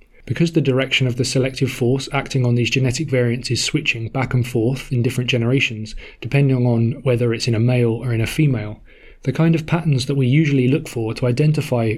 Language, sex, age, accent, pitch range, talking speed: English, male, 20-39, British, 120-140 Hz, 210 wpm